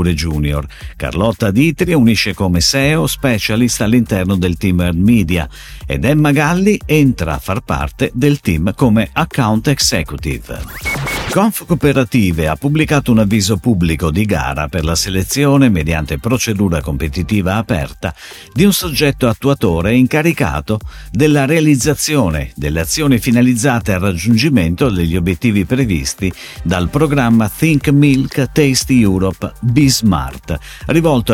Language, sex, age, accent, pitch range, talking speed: Italian, male, 50-69, native, 85-135 Hz, 120 wpm